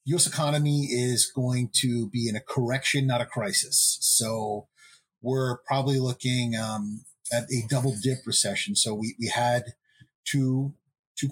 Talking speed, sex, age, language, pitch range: 150 wpm, male, 30-49, English, 110-135 Hz